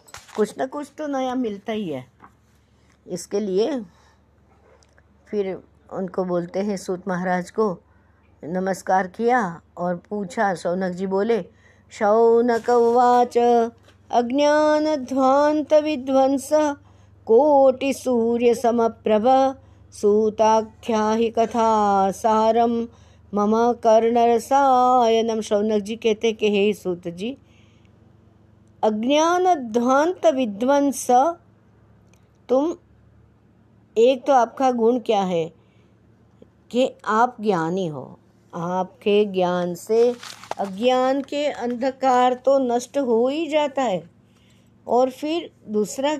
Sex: female